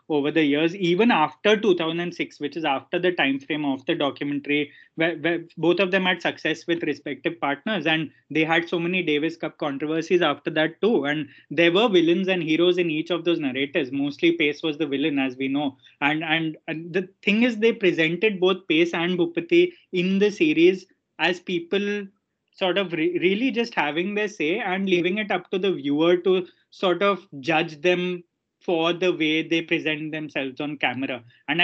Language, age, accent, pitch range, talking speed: English, 20-39, Indian, 155-185 Hz, 190 wpm